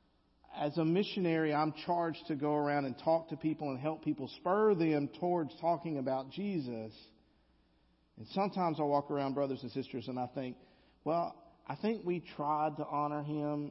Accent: American